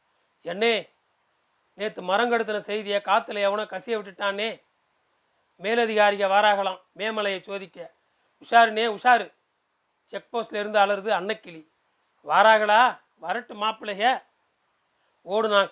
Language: Tamil